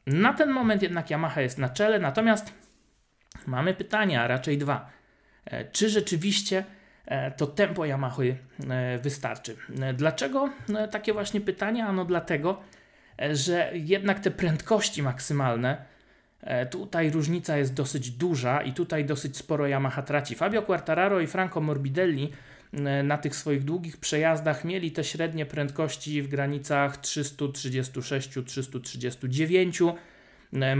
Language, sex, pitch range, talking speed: Polish, male, 130-170 Hz, 115 wpm